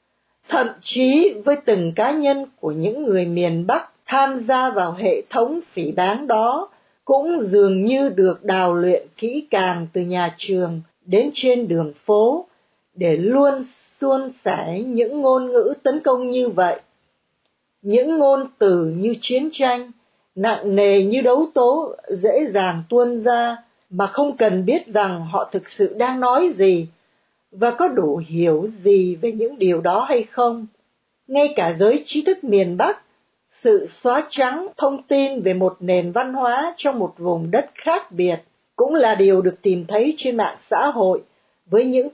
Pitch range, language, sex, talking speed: 190-275 Hz, Vietnamese, female, 165 wpm